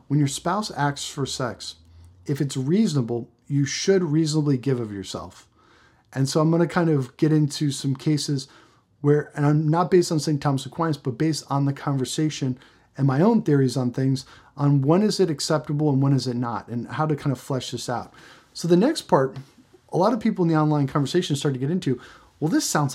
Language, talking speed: English, 215 wpm